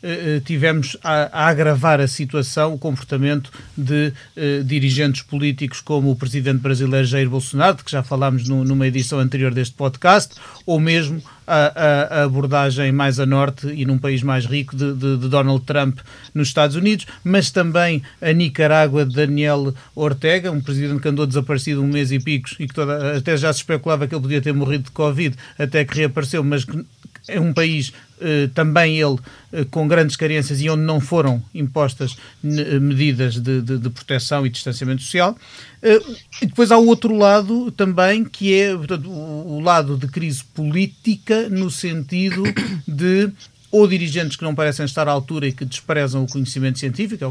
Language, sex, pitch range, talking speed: Portuguese, male, 135-165 Hz, 185 wpm